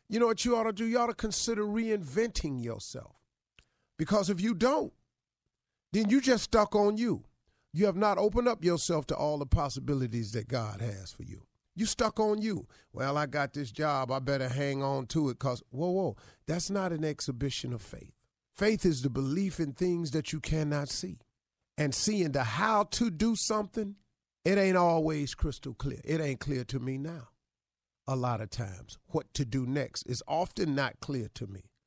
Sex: male